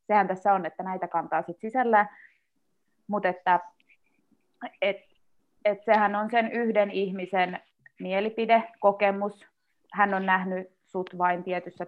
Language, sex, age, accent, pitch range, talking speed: Finnish, female, 20-39, native, 180-205 Hz, 120 wpm